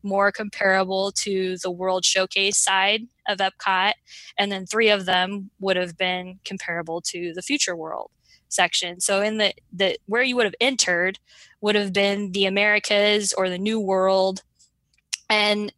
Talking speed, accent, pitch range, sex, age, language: 160 wpm, American, 185-205 Hz, female, 10-29, English